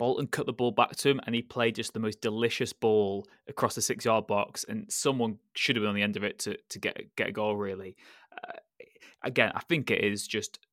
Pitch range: 105-115 Hz